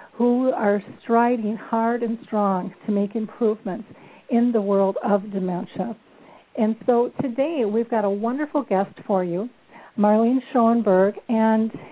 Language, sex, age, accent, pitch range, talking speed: English, female, 50-69, American, 205-240 Hz, 135 wpm